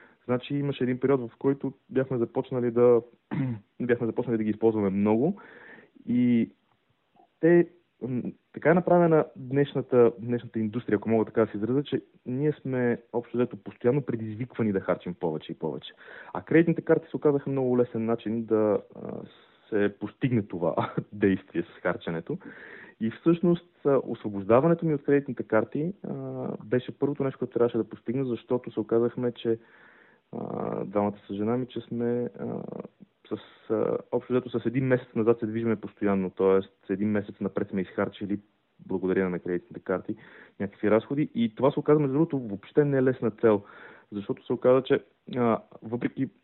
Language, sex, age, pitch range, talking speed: Bulgarian, male, 30-49, 105-130 Hz, 150 wpm